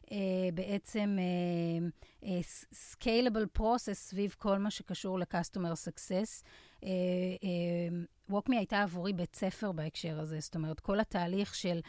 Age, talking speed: 30-49, 120 wpm